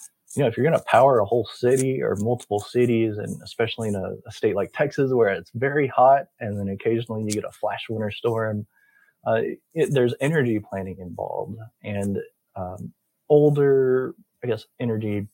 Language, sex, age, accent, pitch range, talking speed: English, male, 20-39, American, 95-120 Hz, 180 wpm